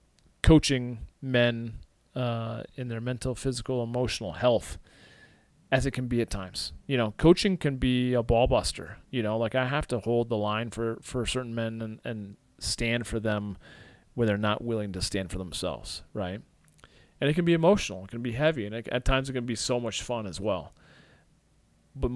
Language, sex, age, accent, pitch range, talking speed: English, male, 40-59, American, 105-125 Hz, 195 wpm